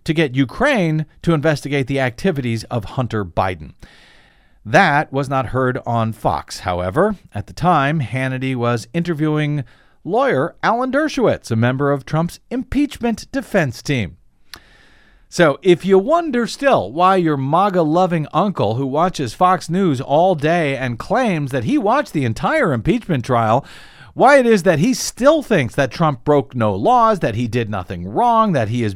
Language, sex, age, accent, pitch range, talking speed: English, male, 50-69, American, 125-185 Hz, 160 wpm